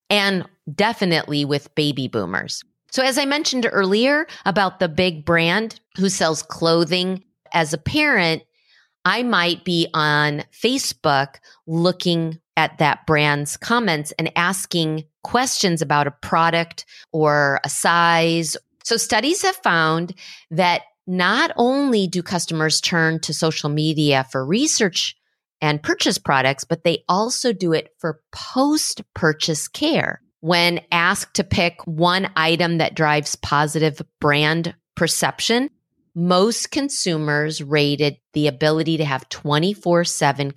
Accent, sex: American, female